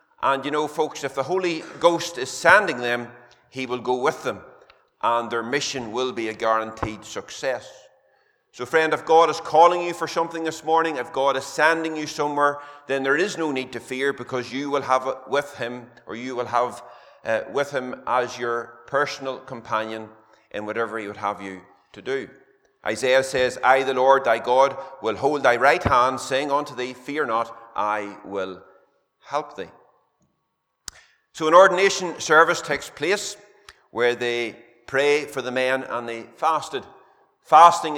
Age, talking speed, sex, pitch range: 30-49, 170 wpm, male, 120-145 Hz